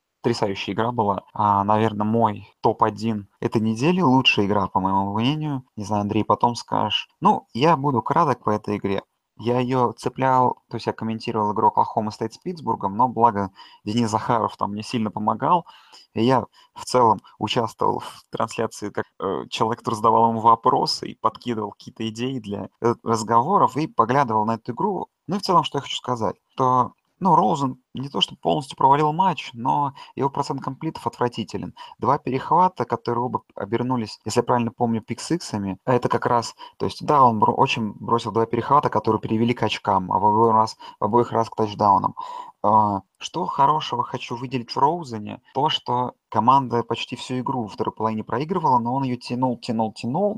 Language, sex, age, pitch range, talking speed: Russian, male, 20-39, 110-130 Hz, 175 wpm